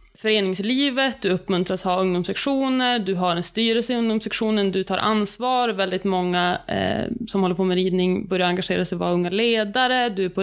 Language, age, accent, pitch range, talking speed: Swedish, 20-39, native, 185-235 Hz, 175 wpm